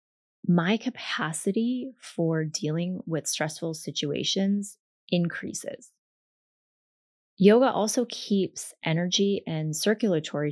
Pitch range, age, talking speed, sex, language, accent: 155-200 Hz, 20-39, 80 wpm, female, English, American